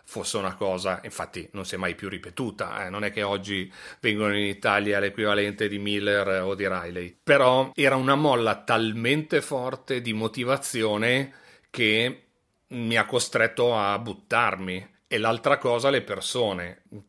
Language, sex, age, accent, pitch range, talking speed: Italian, male, 40-59, native, 100-115 Hz, 150 wpm